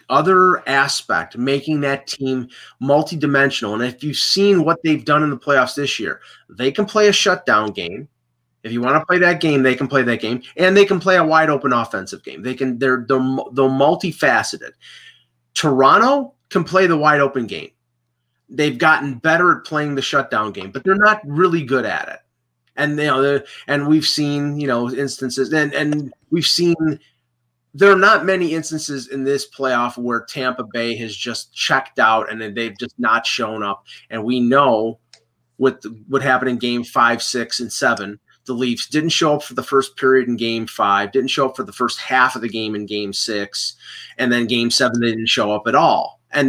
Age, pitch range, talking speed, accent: 30-49, 120-155 Hz, 200 wpm, American